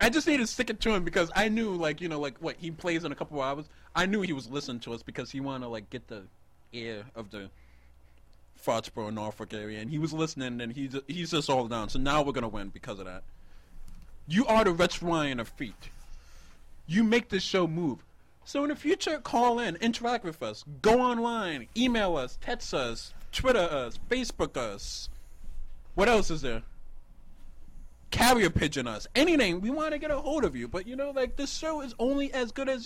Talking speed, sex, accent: 220 wpm, male, American